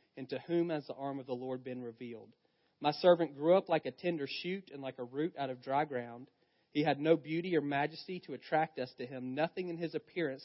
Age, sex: 40-59, male